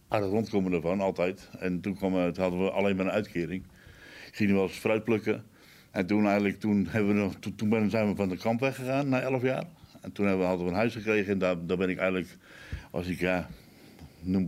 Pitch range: 90-105 Hz